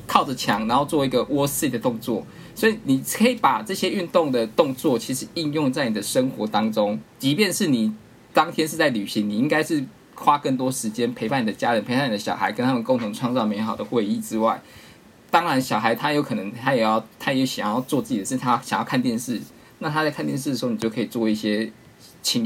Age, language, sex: 20-39, Chinese, male